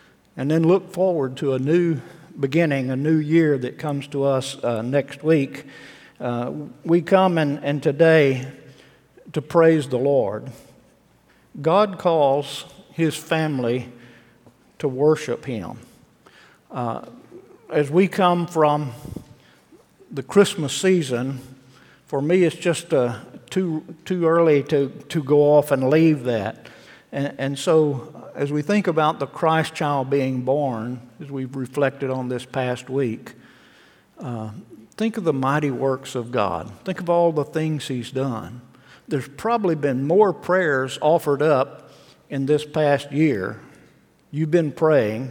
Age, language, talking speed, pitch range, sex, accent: 50-69, English, 140 wpm, 135-165 Hz, male, American